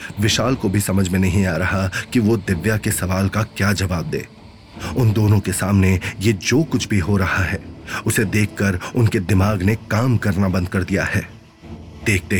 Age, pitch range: 30-49, 95-115 Hz